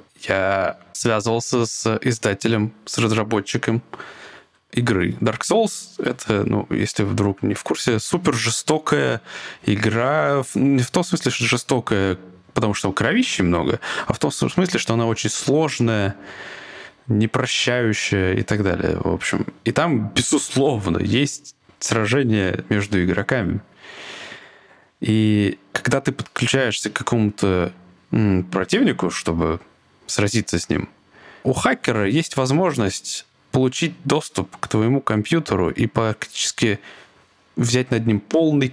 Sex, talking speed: male, 120 wpm